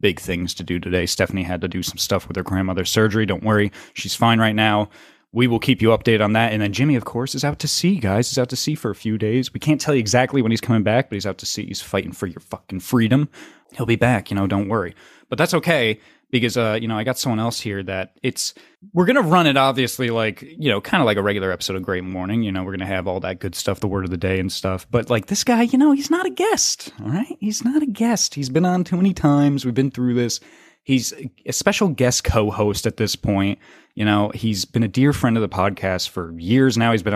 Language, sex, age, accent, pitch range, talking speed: English, male, 20-39, American, 100-130 Hz, 275 wpm